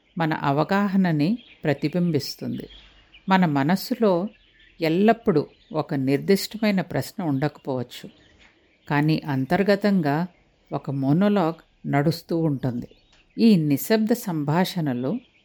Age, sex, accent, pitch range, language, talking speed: 50-69, female, Indian, 145-205 Hz, English, 95 wpm